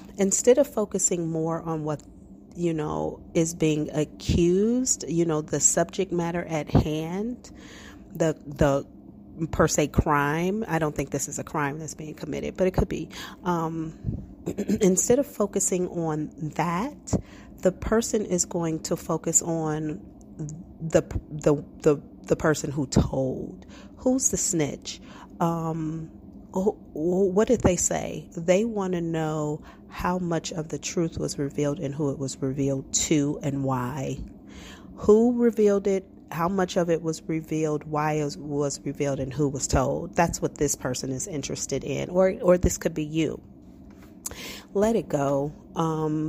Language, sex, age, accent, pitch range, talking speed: English, female, 40-59, American, 145-180 Hz, 155 wpm